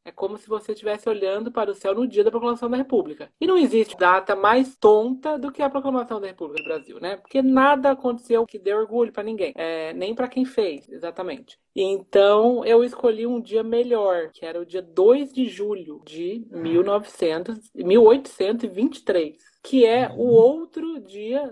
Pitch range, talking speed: 190-270 Hz, 185 wpm